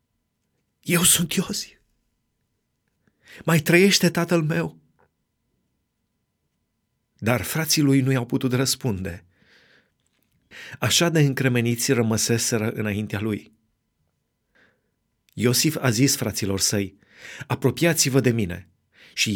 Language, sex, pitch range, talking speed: Romanian, male, 110-150 Hz, 90 wpm